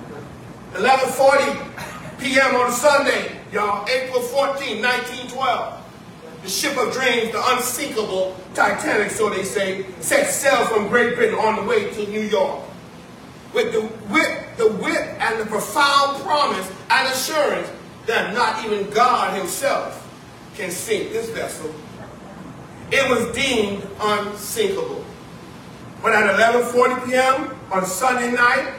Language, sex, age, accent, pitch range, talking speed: English, male, 40-59, American, 210-270 Hz, 125 wpm